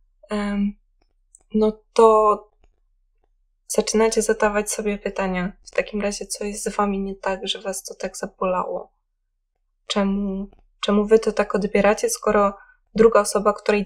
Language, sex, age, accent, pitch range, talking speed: Polish, female, 20-39, native, 200-225 Hz, 130 wpm